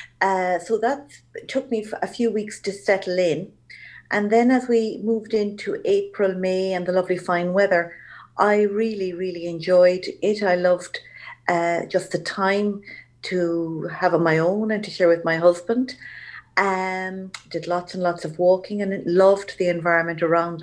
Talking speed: 170 wpm